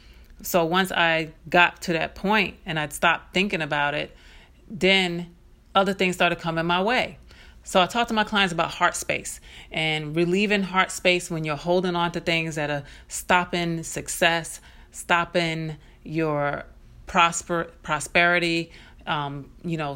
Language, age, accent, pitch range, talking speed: English, 30-49, American, 160-190 Hz, 150 wpm